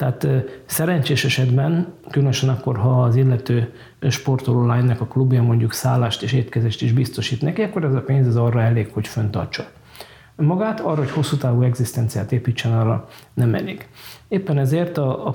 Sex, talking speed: male, 165 wpm